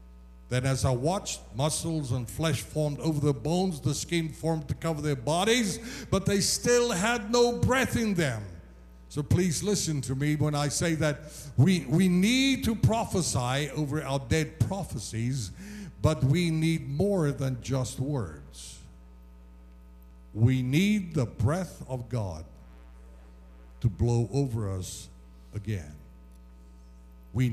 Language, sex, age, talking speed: English, male, 60-79, 135 wpm